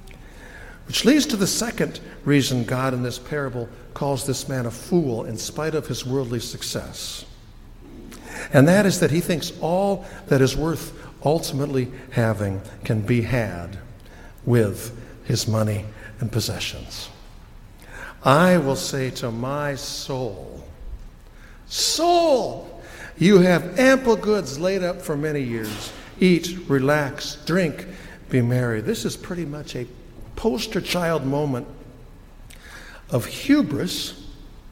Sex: male